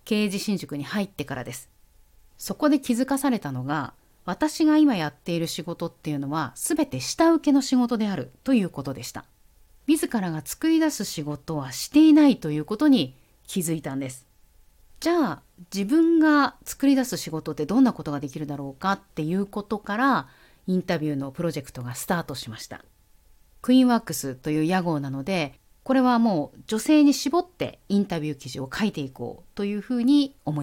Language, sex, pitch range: Japanese, female, 140-225 Hz